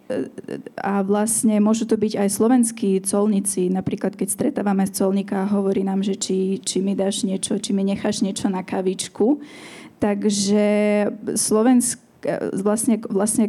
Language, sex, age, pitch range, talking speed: Slovak, female, 20-39, 195-220 Hz, 140 wpm